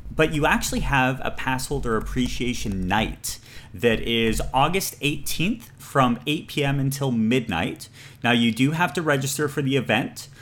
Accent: American